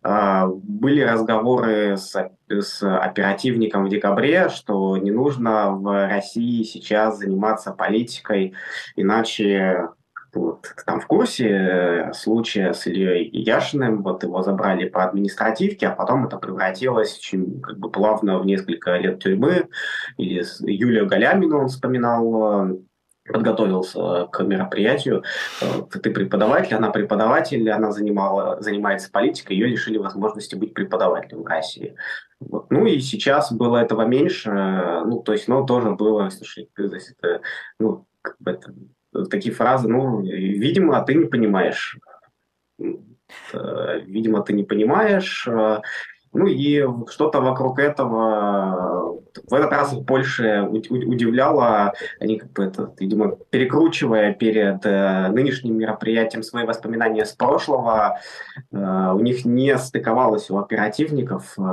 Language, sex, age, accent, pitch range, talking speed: Russian, male, 20-39, native, 100-120 Hz, 120 wpm